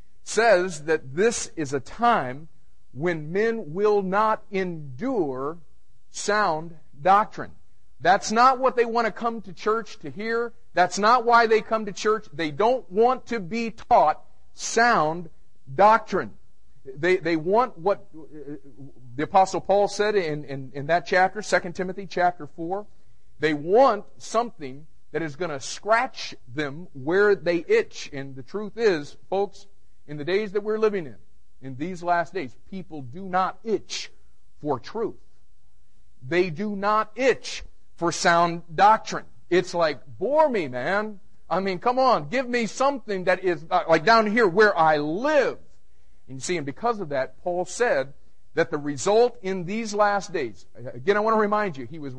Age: 50-69